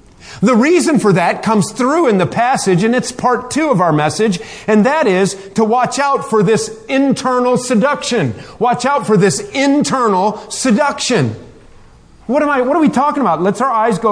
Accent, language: American, English